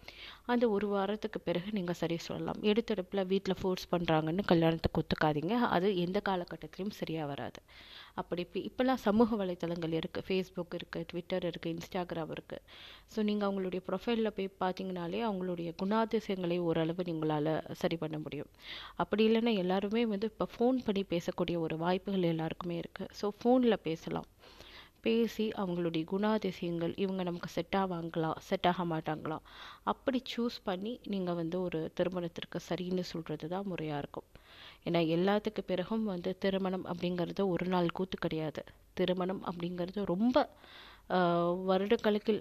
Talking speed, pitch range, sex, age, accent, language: 130 wpm, 170-195 Hz, female, 30-49, native, Tamil